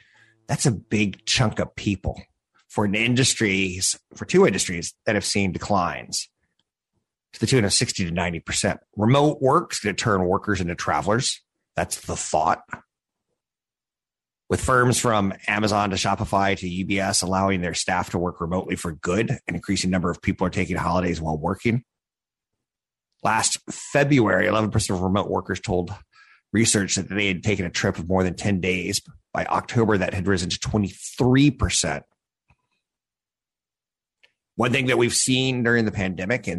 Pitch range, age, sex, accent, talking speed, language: 90-110 Hz, 30-49, male, American, 155 wpm, English